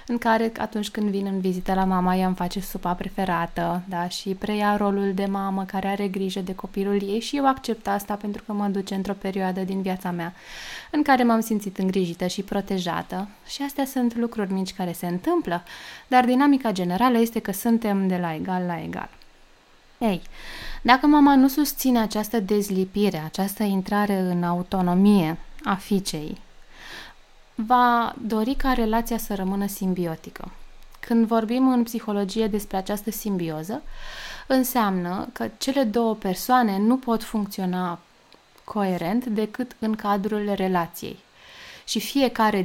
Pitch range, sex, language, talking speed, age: 190-230 Hz, female, Romanian, 150 wpm, 20-39